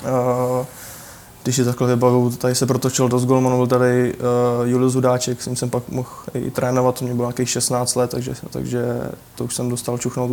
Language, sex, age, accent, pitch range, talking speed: Czech, male, 20-39, native, 125-130 Hz, 200 wpm